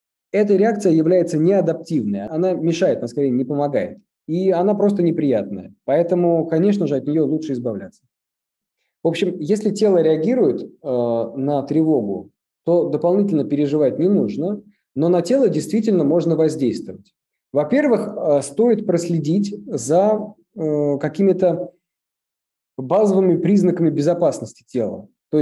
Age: 20-39